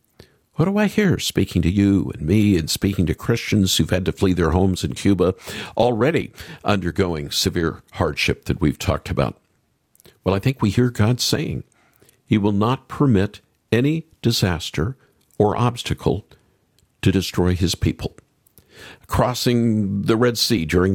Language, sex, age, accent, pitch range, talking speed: English, male, 50-69, American, 95-135 Hz, 150 wpm